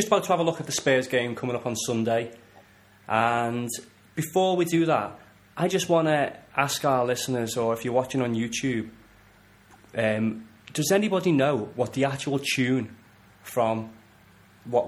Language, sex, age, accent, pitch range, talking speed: English, male, 20-39, British, 110-135 Hz, 170 wpm